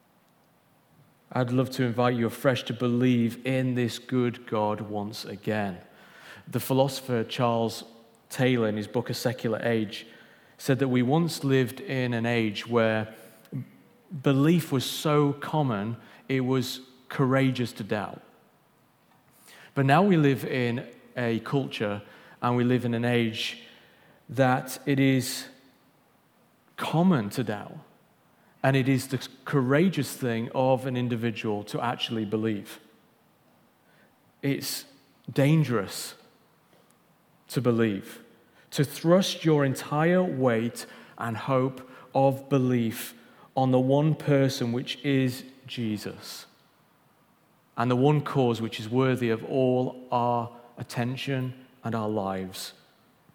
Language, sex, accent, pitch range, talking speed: English, male, British, 115-135 Hz, 120 wpm